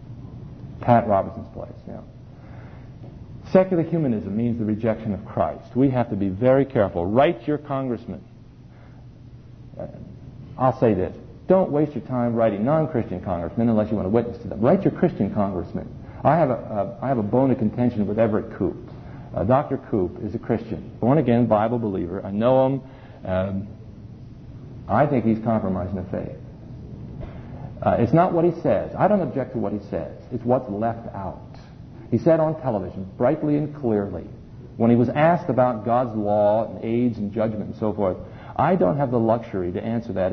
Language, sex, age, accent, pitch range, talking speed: English, male, 50-69, American, 105-130 Hz, 170 wpm